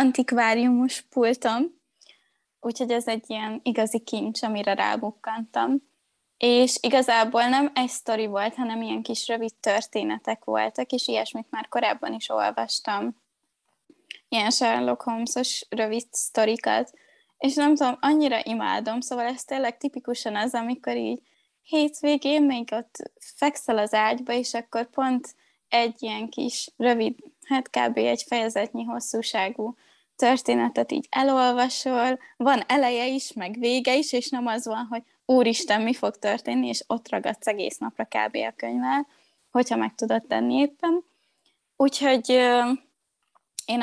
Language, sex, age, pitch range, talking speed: Hungarian, female, 20-39, 220-280 Hz, 130 wpm